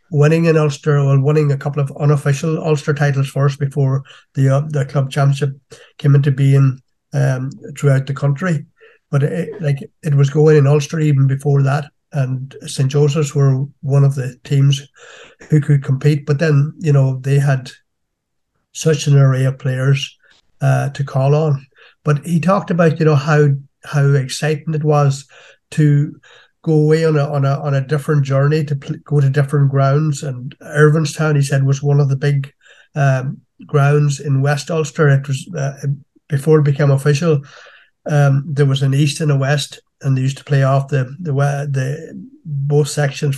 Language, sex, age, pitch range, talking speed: English, male, 60-79, 140-150 Hz, 185 wpm